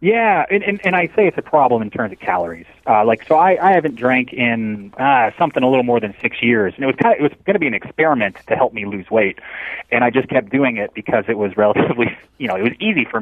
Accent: American